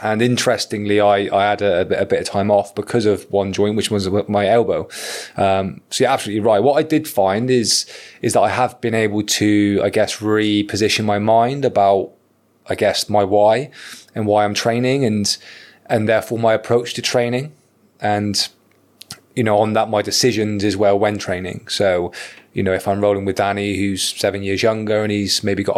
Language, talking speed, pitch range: English, 200 wpm, 100-120 Hz